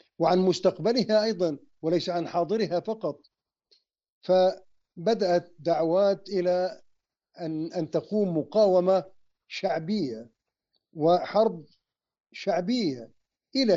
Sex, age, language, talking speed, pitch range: male, 50-69, Arabic, 80 wpm, 160-195 Hz